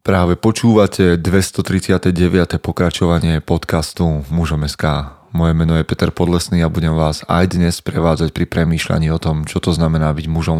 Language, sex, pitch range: Slovak, male, 80-95 Hz